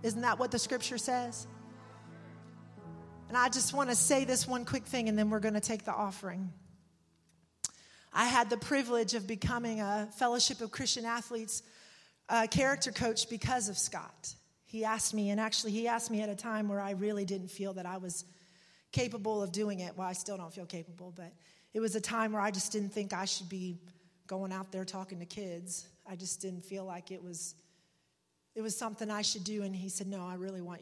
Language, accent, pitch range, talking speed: English, American, 180-220 Hz, 210 wpm